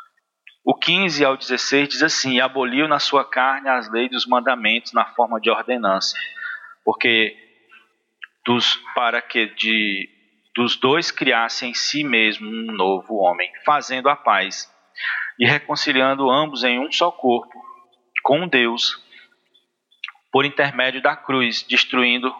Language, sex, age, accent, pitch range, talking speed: Portuguese, male, 40-59, Brazilian, 120-150 Hz, 125 wpm